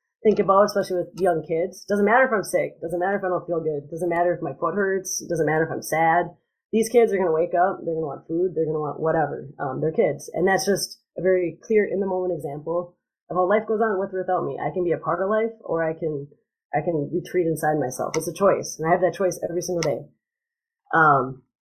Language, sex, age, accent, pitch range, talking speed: English, female, 30-49, American, 165-195 Hz, 265 wpm